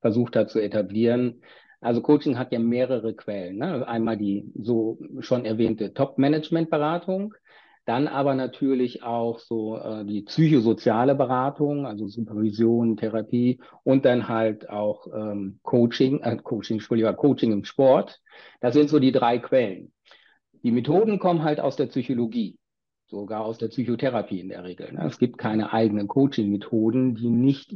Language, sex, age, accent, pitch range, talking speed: German, male, 50-69, German, 110-135 Hz, 145 wpm